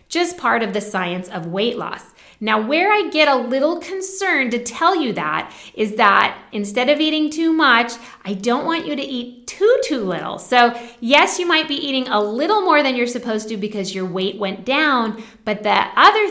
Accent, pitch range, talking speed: American, 190-260 Hz, 205 wpm